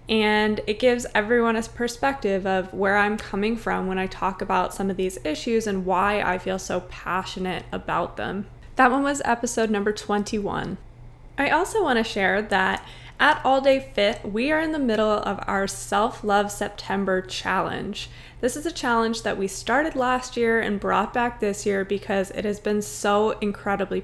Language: English